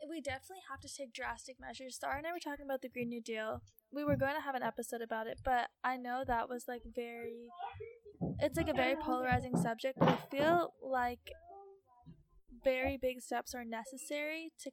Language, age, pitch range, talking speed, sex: English, 10-29, 235-270 Hz, 200 wpm, female